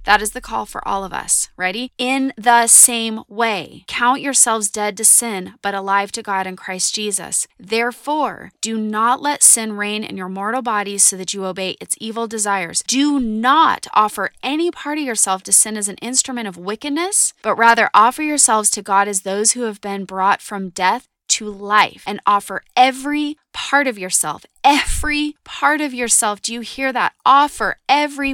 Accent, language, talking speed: American, English, 185 wpm